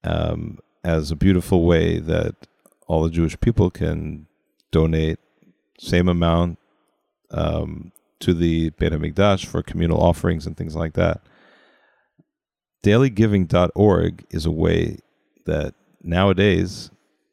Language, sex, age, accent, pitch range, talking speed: English, male, 40-59, American, 80-100 Hz, 110 wpm